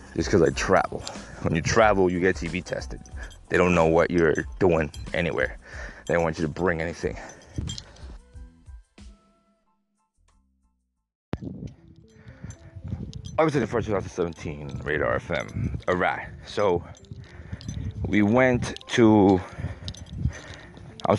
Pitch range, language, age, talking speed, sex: 90-110 Hz, English, 30-49, 100 wpm, male